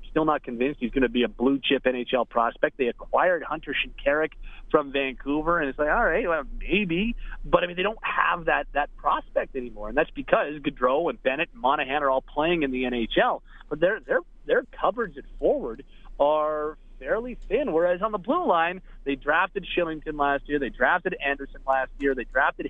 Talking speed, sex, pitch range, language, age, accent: 200 wpm, male, 135-170 Hz, English, 30-49, American